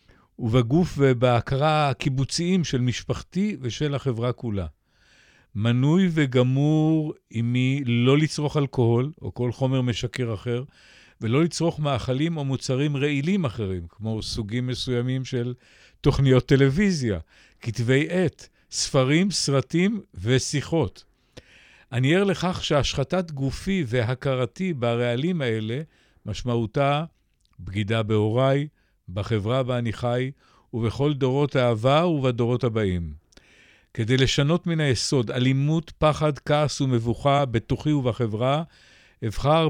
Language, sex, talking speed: Hebrew, male, 100 wpm